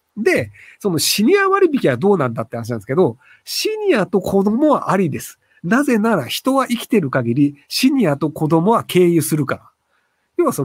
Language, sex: Japanese, male